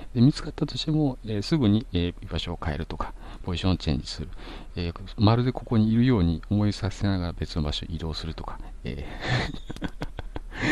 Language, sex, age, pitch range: Japanese, male, 50-69, 85-120 Hz